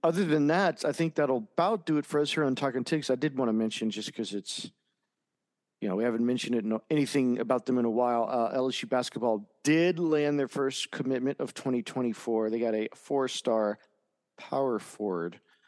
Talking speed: 200 wpm